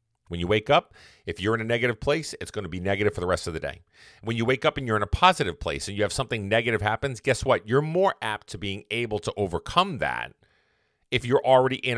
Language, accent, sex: English, American, male